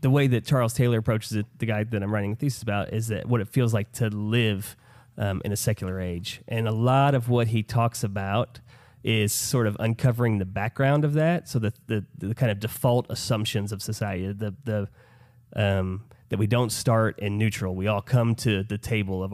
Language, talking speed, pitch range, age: English, 215 wpm, 105-125 Hz, 30-49